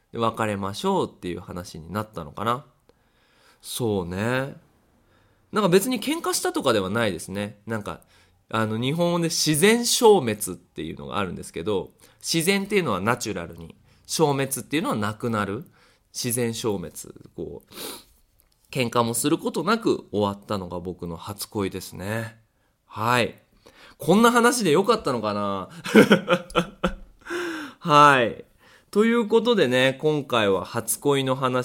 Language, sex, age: Japanese, male, 20-39